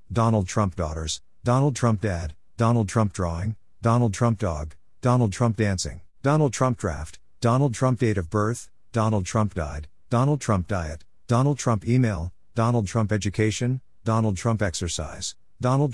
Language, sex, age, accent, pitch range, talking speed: English, male, 50-69, American, 95-115 Hz, 145 wpm